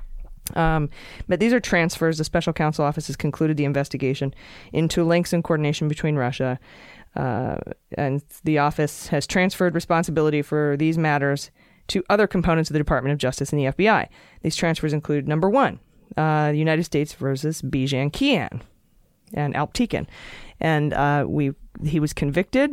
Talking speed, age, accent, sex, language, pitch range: 155 wpm, 20-39, American, female, English, 145-170 Hz